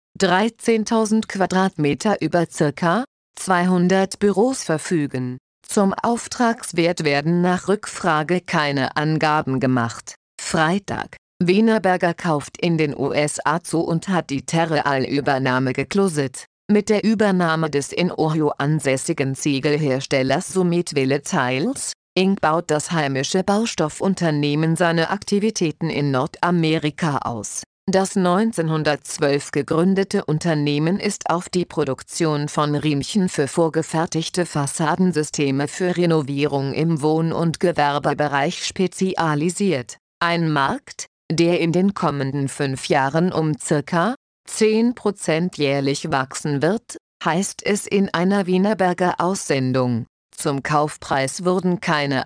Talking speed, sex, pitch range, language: 105 wpm, female, 145-185 Hz, German